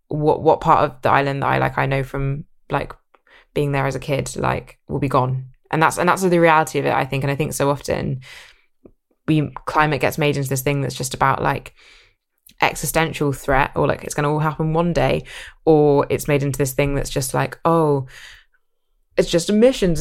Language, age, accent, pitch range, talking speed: English, 20-39, British, 145-170 Hz, 215 wpm